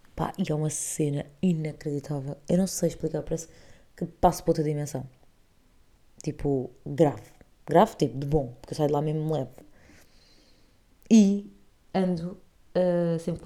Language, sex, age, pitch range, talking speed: Portuguese, female, 20-39, 145-175 Hz, 145 wpm